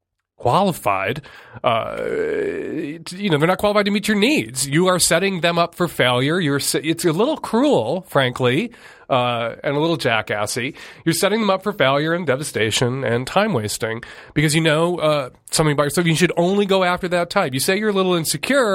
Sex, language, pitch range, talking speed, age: male, English, 135-185 Hz, 195 wpm, 30-49